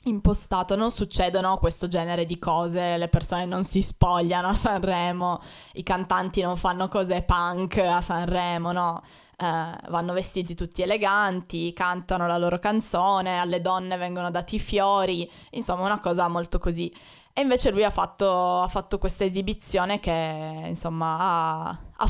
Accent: native